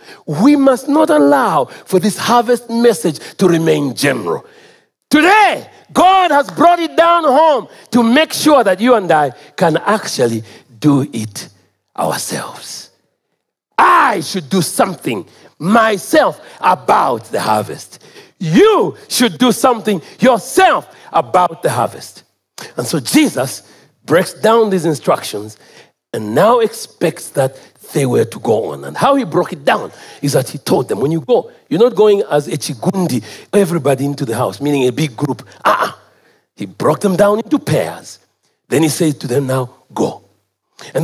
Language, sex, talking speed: English, male, 155 wpm